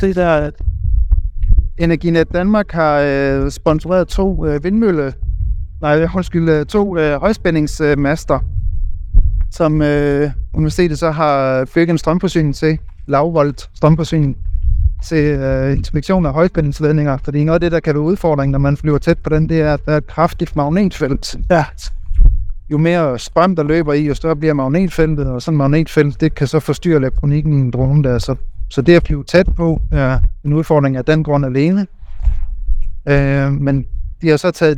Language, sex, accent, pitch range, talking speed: Danish, male, native, 130-160 Hz, 175 wpm